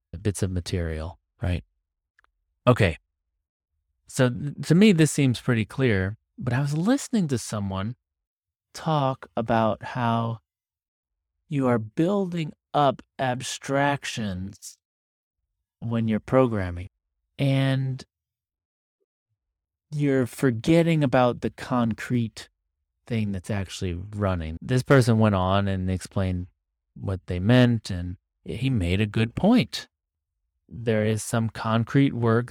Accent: American